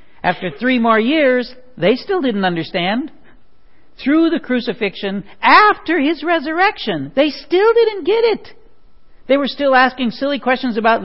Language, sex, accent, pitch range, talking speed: English, male, American, 175-275 Hz, 140 wpm